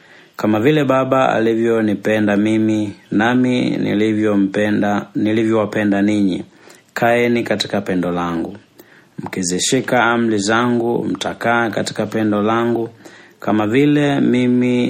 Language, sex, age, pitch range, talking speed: Swahili, male, 30-49, 100-120 Hz, 95 wpm